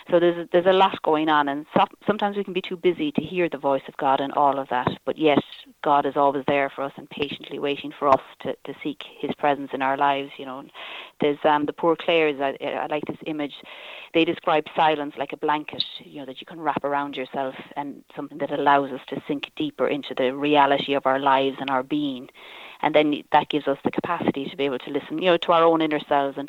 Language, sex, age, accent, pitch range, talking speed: English, female, 30-49, Irish, 135-155 Hz, 250 wpm